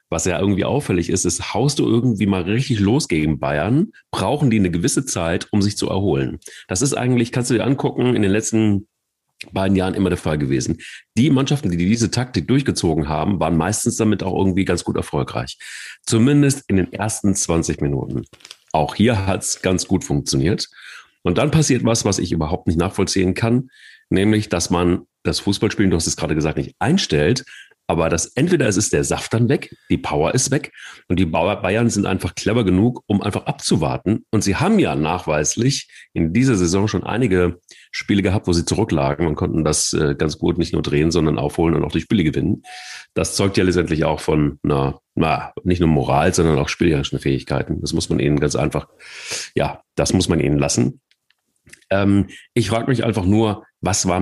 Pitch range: 85-110 Hz